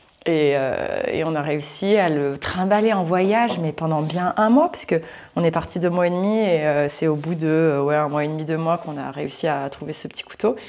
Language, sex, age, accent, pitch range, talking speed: French, female, 20-39, French, 145-180 Hz, 265 wpm